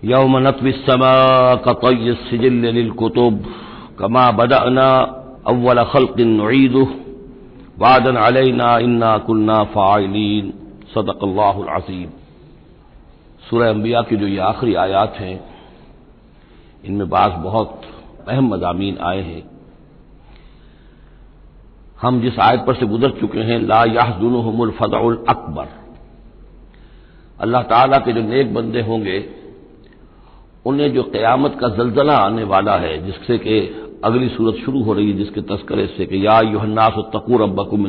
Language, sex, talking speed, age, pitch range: Hindi, male, 105 wpm, 60-79, 105-125 Hz